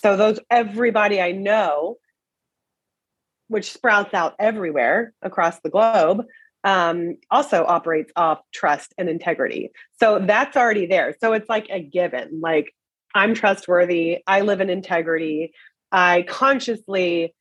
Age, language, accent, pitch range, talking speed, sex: 30-49, English, American, 165-200 Hz, 130 wpm, female